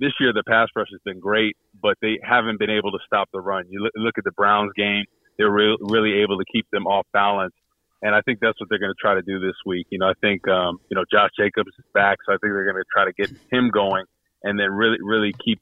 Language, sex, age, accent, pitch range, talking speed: English, male, 30-49, American, 100-115 Hz, 275 wpm